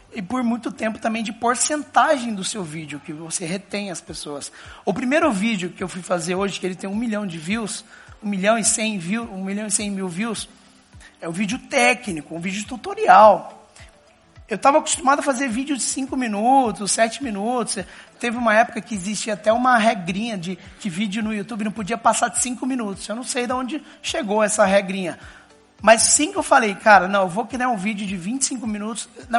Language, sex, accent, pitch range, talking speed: Portuguese, male, Brazilian, 190-240 Hz, 200 wpm